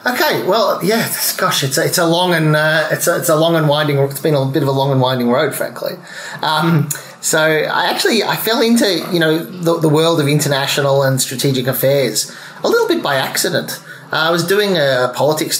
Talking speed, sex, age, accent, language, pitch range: 220 wpm, male, 30-49, Australian, English, 125-160 Hz